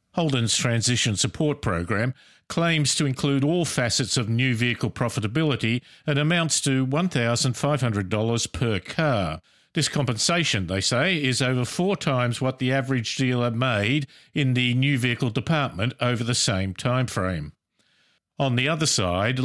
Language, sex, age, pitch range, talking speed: English, male, 50-69, 115-145 Hz, 140 wpm